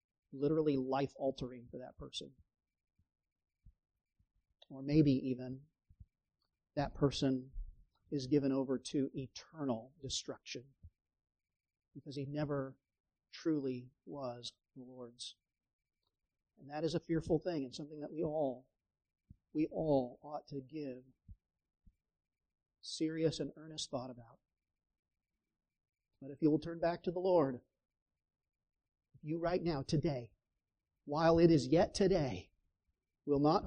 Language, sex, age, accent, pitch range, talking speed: English, male, 40-59, American, 120-155 Hz, 115 wpm